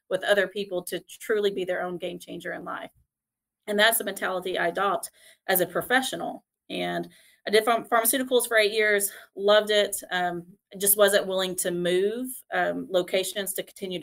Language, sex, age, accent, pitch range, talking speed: English, female, 30-49, American, 175-210 Hz, 170 wpm